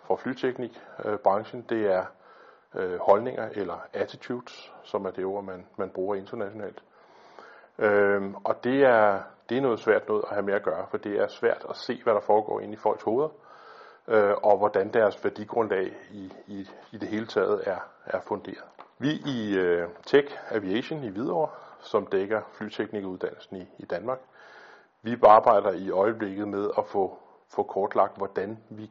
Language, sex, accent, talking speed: Danish, male, native, 170 wpm